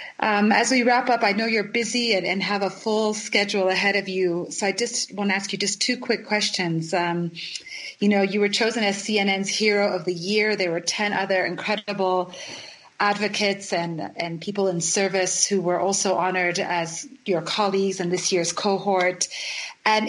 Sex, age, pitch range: female, 30-49, 180-215 Hz